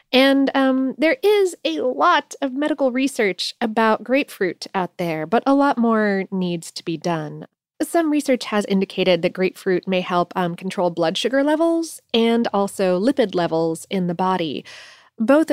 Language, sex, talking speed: English, female, 160 wpm